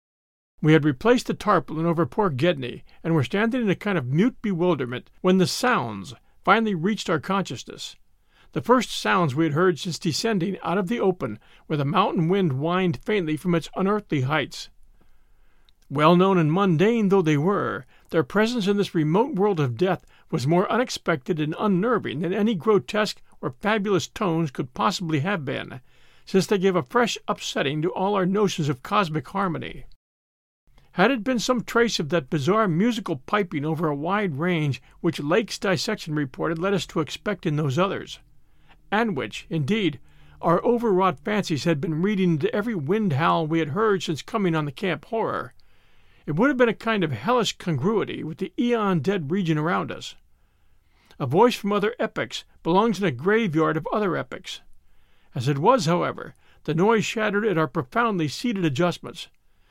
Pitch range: 155-205 Hz